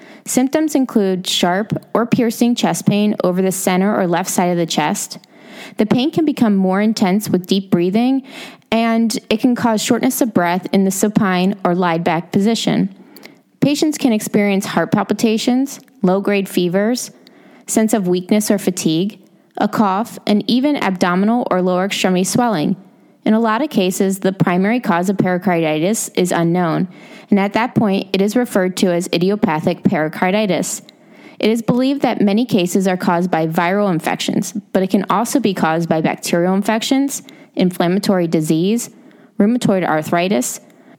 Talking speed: 155 wpm